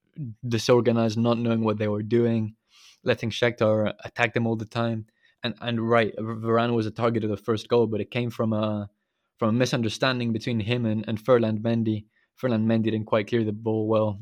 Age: 20-39